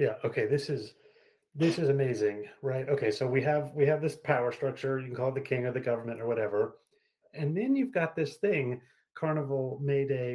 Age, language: 30-49, English